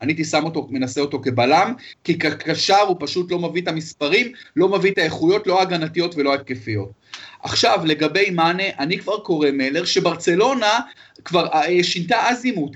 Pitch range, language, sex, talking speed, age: 145-185 Hz, Hebrew, male, 165 wpm, 30-49